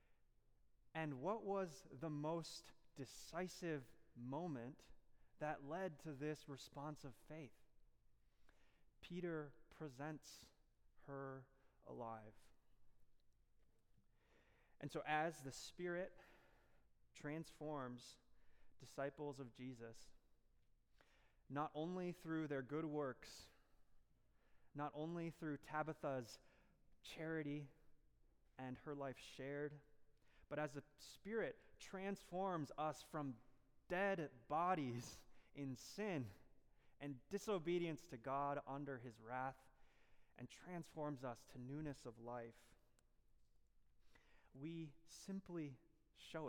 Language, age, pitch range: English, 20-39, 130-160 Hz